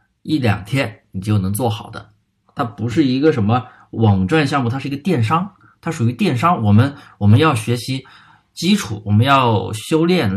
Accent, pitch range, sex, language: native, 105-130 Hz, male, Chinese